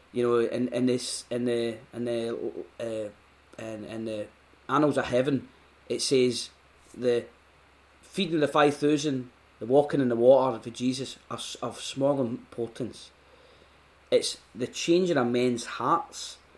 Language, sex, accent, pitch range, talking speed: English, male, British, 115-145 Hz, 150 wpm